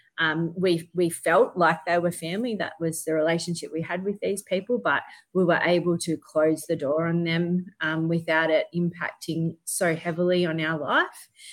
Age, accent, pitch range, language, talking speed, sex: 30-49, Australian, 165-190 Hz, English, 185 wpm, female